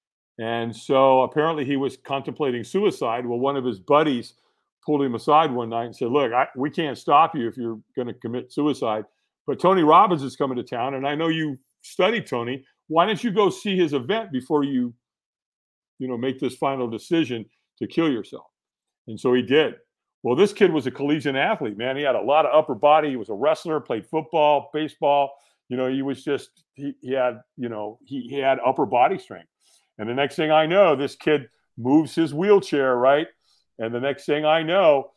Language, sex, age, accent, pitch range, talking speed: English, male, 50-69, American, 120-150 Hz, 205 wpm